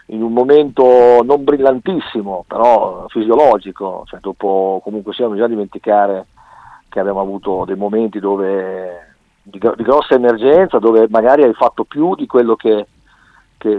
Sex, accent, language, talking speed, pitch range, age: male, native, Italian, 145 wpm, 100-125 Hz, 50-69